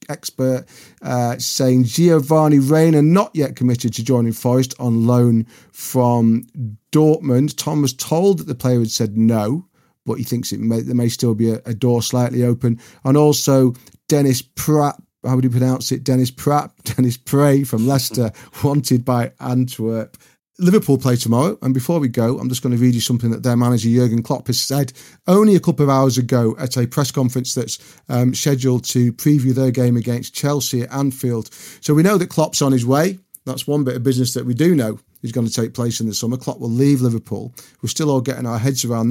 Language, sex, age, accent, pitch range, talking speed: English, male, 40-59, British, 120-145 Hz, 205 wpm